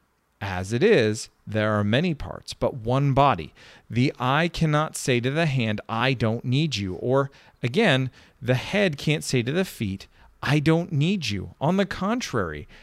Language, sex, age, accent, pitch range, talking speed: English, male, 40-59, American, 105-155 Hz, 175 wpm